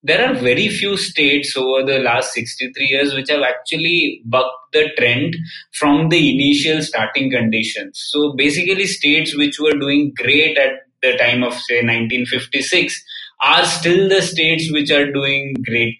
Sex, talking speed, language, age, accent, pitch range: male, 160 wpm, English, 20-39, Indian, 125-165 Hz